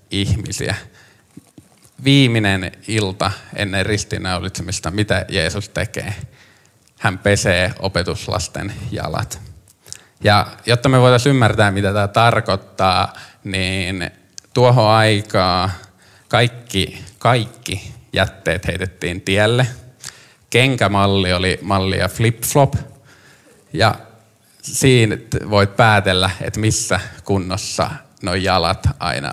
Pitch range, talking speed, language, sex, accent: 95-115 Hz, 85 wpm, Finnish, male, native